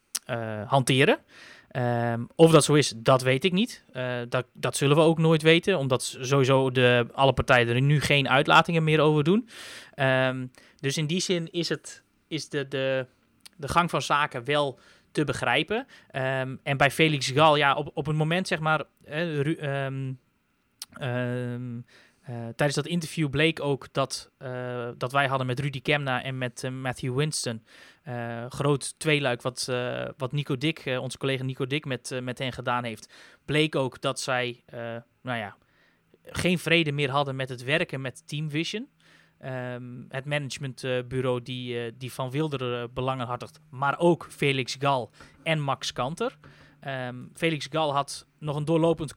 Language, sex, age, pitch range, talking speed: Dutch, male, 20-39, 125-155 Hz, 175 wpm